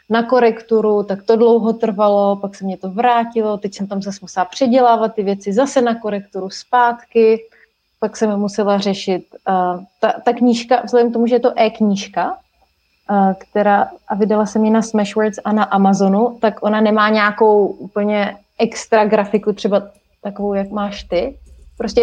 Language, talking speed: Slovak, 165 wpm